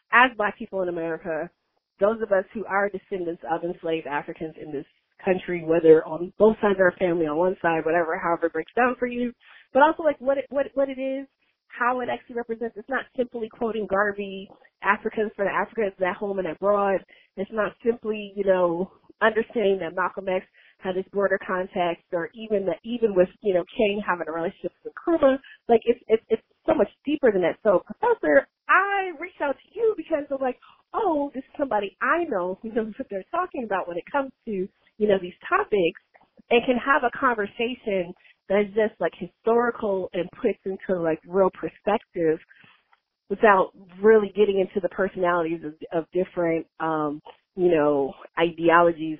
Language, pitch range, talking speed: English, 175-235 Hz, 190 wpm